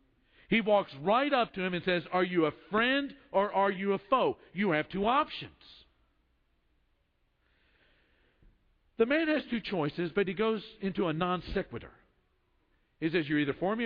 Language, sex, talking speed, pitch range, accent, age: English, male, 170 wpm, 155-210 Hz, American, 50-69